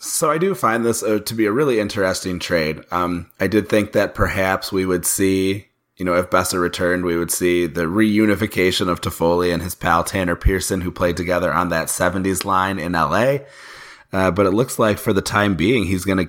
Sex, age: male, 30-49